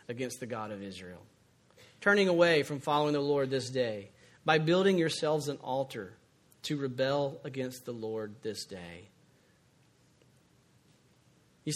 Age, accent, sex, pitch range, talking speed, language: 40-59, American, male, 135-170 Hz, 135 wpm, English